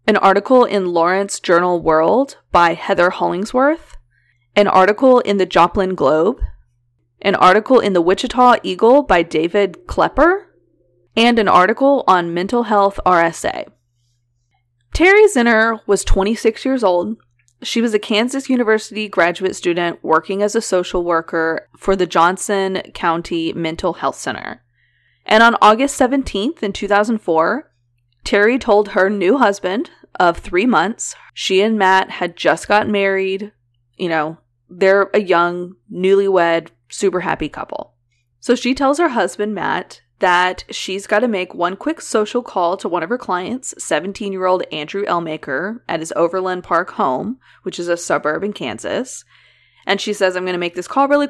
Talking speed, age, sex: 150 wpm, 20-39, female